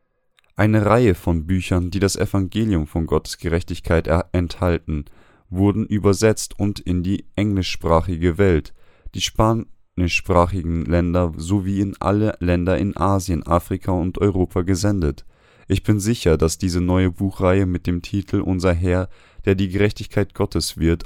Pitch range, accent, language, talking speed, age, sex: 85-100 Hz, German, German, 135 wpm, 20-39, male